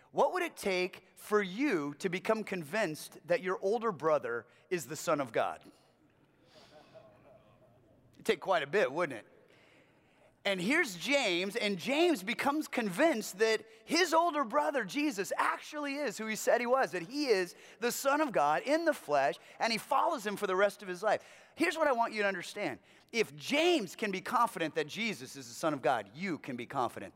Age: 30-49